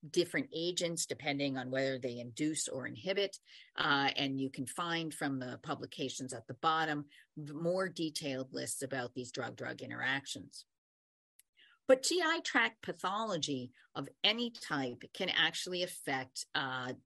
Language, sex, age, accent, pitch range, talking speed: English, female, 40-59, American, 135-180 Hz, 135 wpm